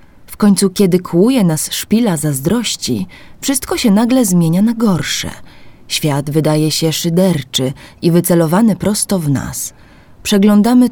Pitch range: 155-215 Hz